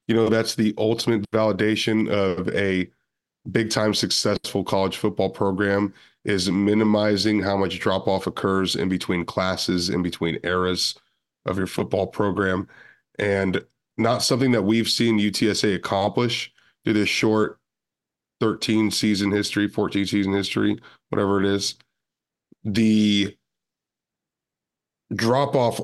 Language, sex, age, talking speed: English, male, 20-39, 115 wpm